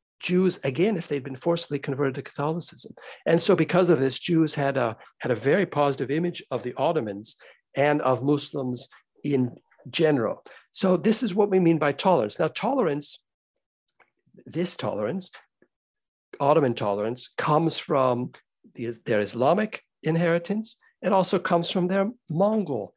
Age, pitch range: 60-79, 135-180 Hz